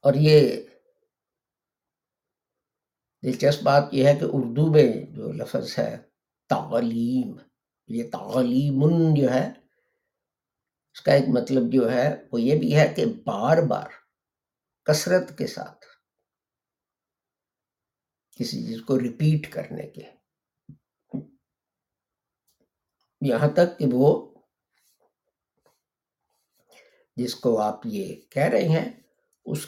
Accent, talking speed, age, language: Indian, 95 wpm, 60-79, English